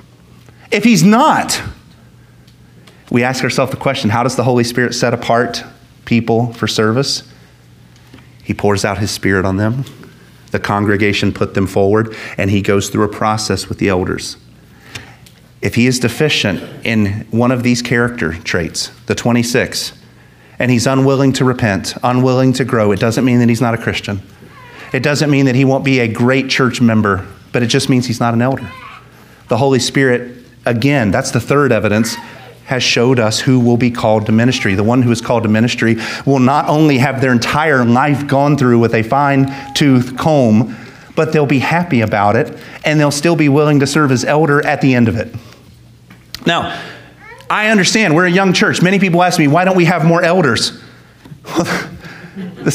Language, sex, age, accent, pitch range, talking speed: English, male, 30-49, American, 110-140 Hz, 185 wpm